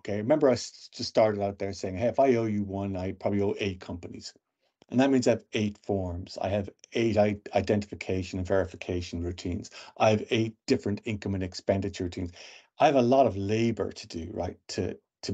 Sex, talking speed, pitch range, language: male, 205 wpm, 95-115 Hz, English